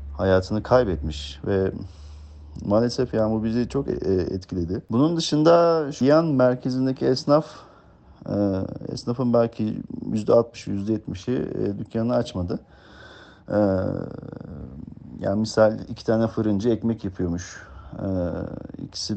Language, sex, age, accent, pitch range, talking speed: Turkish, male, 40-59, native, 95-115 Hz, 90 wpm